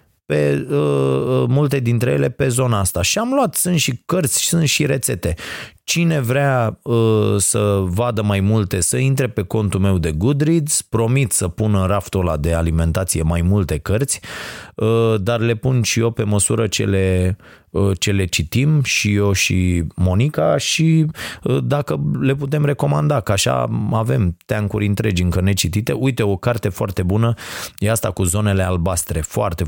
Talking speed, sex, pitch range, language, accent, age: 170 wpm, male, 95-120 Hz, Romanian, native, 30-49